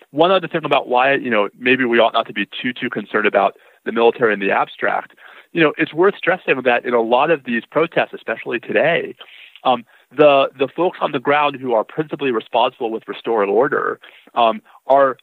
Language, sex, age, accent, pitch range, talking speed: English, male, 30-49, American, 115-155 Hz, 205 wpm